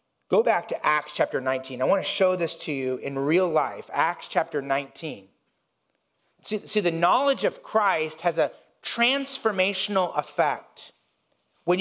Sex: male